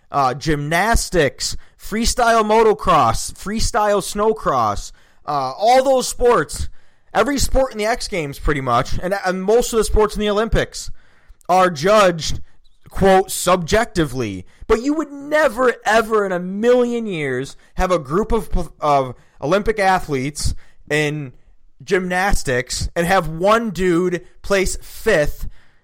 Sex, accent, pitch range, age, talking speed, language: male, American, 170-230 Hz, 20-39, 130 wpm, English